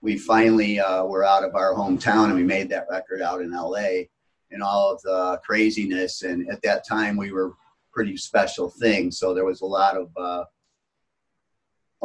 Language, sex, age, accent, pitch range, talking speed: English, male, 40-59, American, 90-110 Hz, 190 wpm